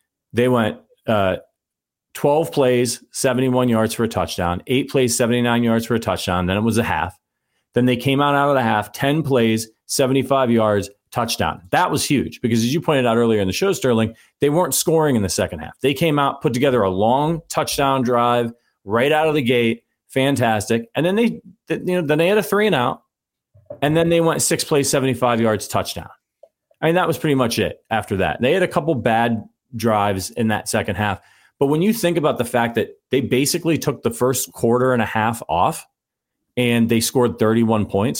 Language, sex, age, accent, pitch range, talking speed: English, male, 40-59, American, 110-140 Hz, 205 wpm